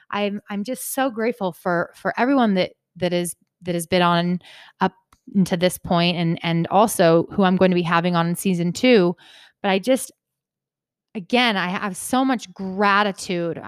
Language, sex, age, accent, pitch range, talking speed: English, female, 20-39, American, 180-215 Hz, 180 wpm